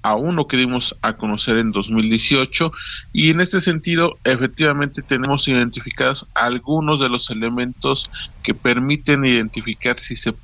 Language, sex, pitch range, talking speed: Spanish, male, 110-125 Hz, 125 wpm